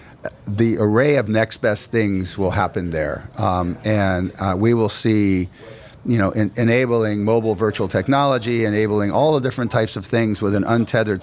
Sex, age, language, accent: male, 50-69, English, American